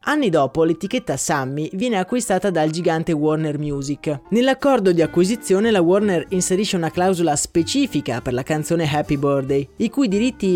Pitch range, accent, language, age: 155-210 Hz, native, Italian, 20-39